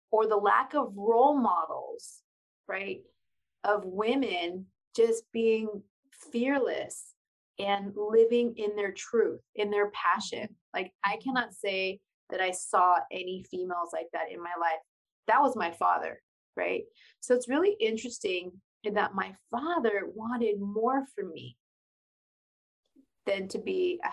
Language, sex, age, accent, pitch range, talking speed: English, female, 30-49, American, 195-245 Hz, 135 wpm